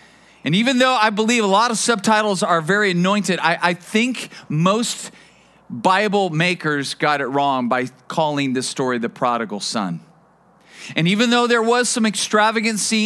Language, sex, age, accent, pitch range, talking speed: English, male, 40-59, American, 170-215 Hz, 160 wpm